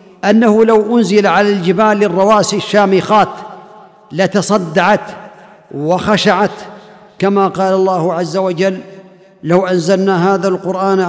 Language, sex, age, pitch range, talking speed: Arabic, male, 50-69, 180-210 Hz, 95 wpm